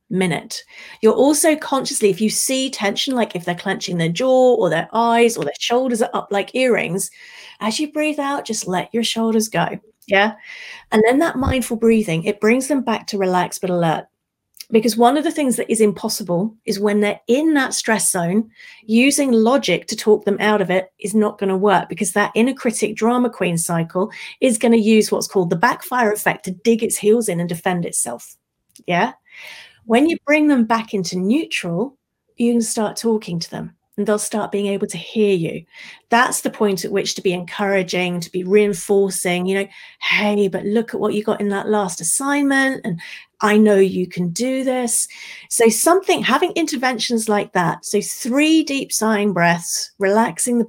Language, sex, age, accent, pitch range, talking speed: English, female, 30-49, British, 195-240 Hz, 195 wpm